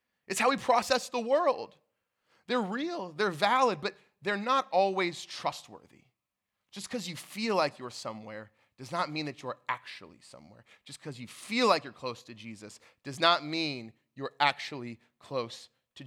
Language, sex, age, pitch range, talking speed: English, male, 20-39, 140-215 Hz, 170 wpm